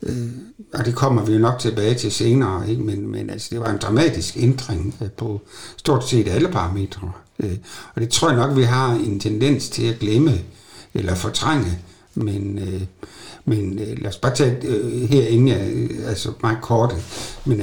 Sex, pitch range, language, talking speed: male, 100-120 Hz, Danish, 185 wpm